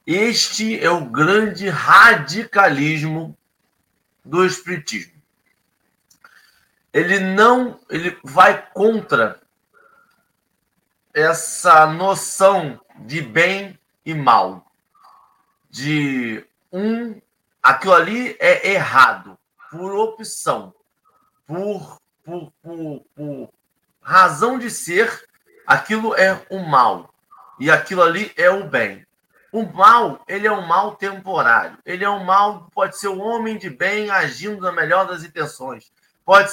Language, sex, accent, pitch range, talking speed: Portuguese, male, Brazilian, 165-210 Hz, 105 wpm